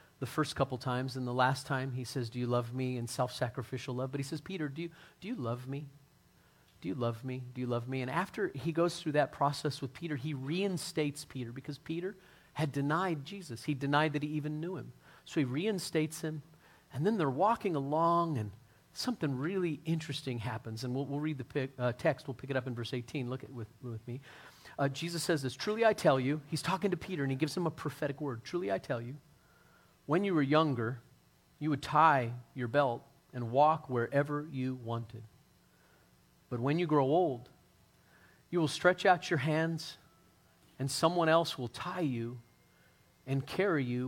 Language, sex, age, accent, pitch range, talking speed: English, male, 40-59, American, 125-160 Hz, 200 wpm